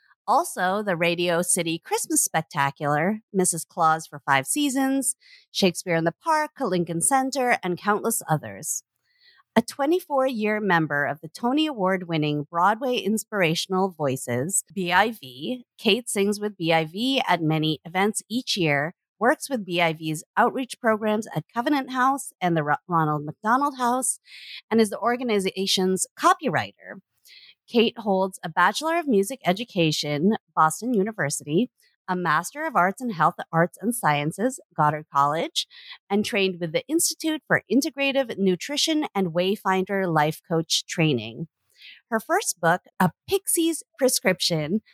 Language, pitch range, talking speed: English, 165-250 Hz, 130 wpm